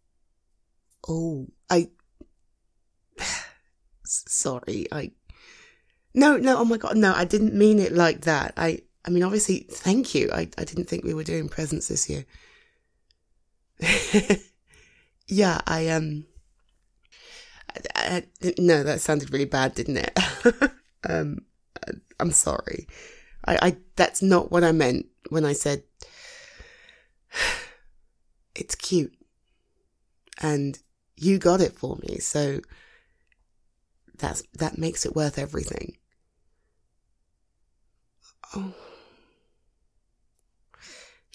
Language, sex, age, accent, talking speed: English, female, 20-39, British, 105 wpm